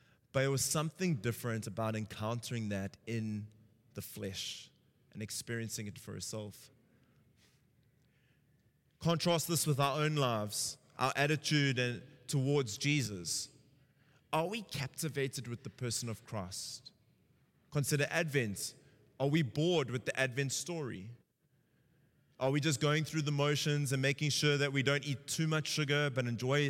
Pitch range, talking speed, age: 125-145 Hz, 140 wpm, 20-39